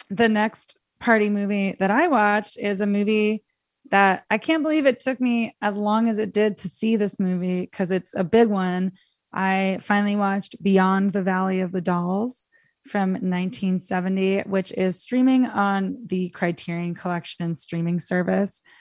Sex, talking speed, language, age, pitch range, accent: female, 165 wpm, English, 20-39, 180-215 Hz, American